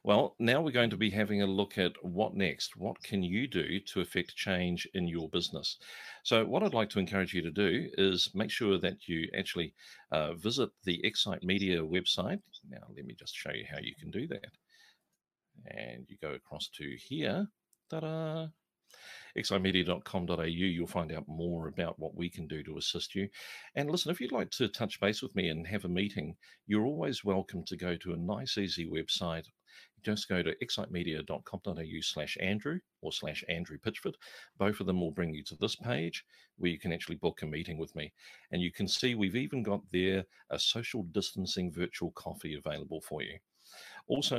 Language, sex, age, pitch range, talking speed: English, male, 40-59, 85-105 Hz, 195 wpm